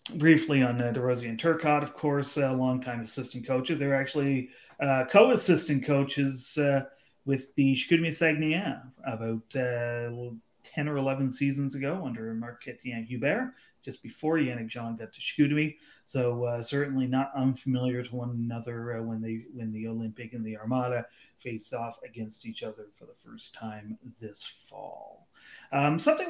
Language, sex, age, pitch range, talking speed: English, male, 30-49, 120-150 Hz, 155 wpm